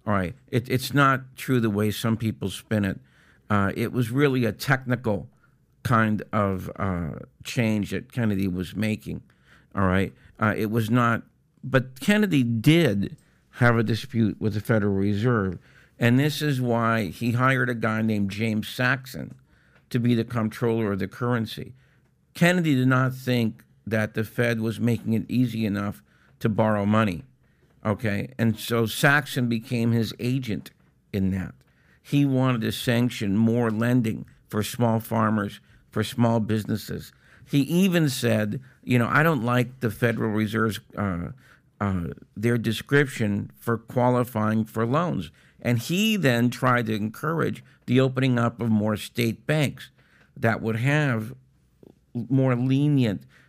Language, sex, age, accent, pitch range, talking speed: English, male, 50-69, American, 105-130 Hz, 150 wpm